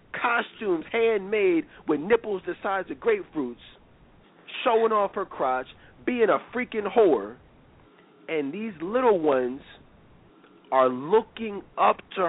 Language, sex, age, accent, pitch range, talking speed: English, male, 40-59, American, 145-215 Hz, 115 wpm